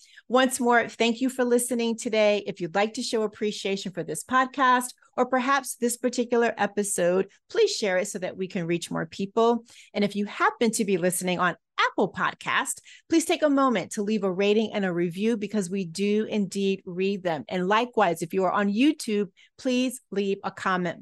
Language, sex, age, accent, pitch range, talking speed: English, female, 30-49, American, 190-240 Hz, 195 wpm